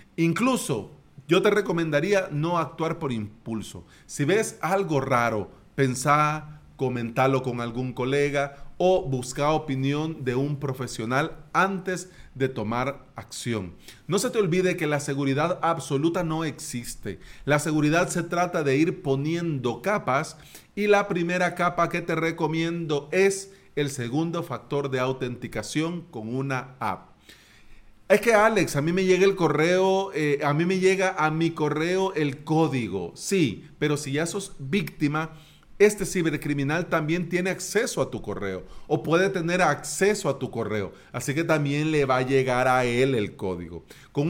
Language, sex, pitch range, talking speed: Spanish, male, 130-175 Hz, 155 wpm